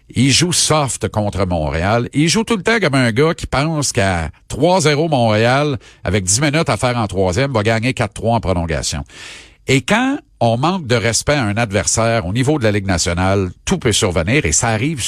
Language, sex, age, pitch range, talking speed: French, male, 50-69, 110-155 Hz, 205 wpm